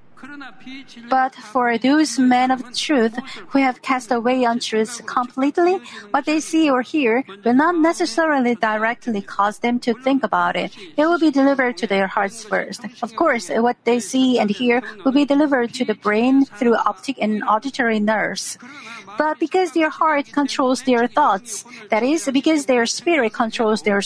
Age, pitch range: 40-59, 225-285 Hz